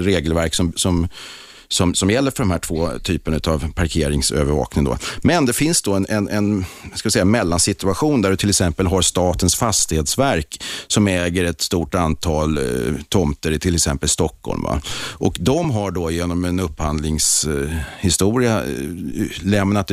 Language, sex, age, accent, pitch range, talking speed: Swedish, male, 40-59, native, 80-100 Hz, 160 wpm